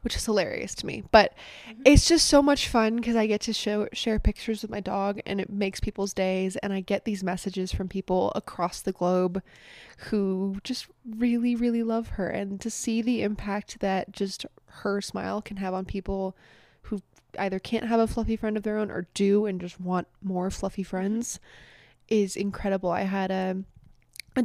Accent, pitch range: American, 185-210 Hz